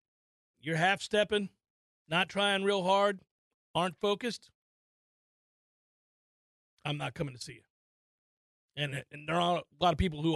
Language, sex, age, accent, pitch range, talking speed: English, male, 40-59, American, 155-200 Hz, 140 wpm